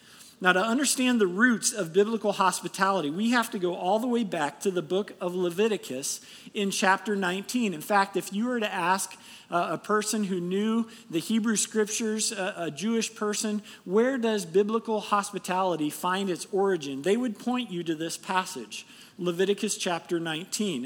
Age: 50-69